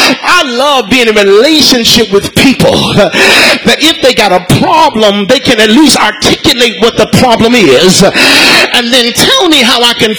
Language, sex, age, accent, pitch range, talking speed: English, male, 40-59, American, 205-265 Hz, 175 wpm